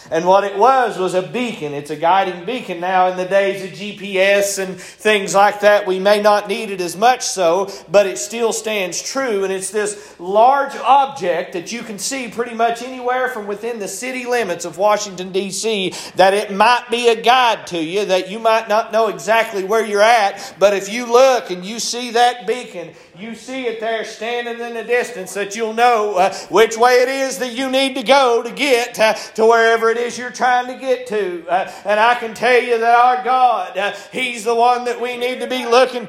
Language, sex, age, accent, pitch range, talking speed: English, male, 40-59, American, 205-255 Hz, 220 wpm